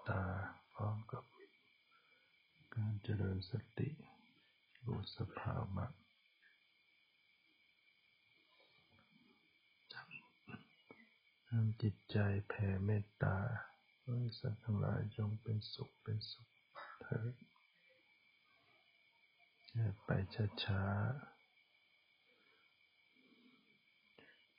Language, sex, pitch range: English, male, 105-125 Hz